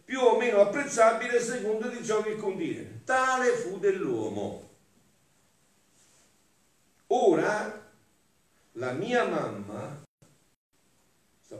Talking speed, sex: 95 wpm, male